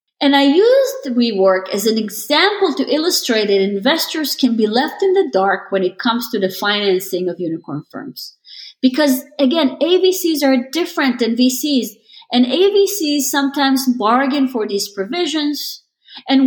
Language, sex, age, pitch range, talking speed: English, female, 30-49, 190-270 Hz, 150 wpm